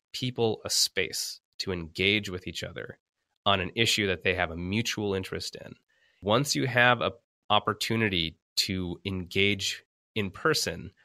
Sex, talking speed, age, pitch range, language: male, 145 wpm, 30-49, 90-120 Hz, English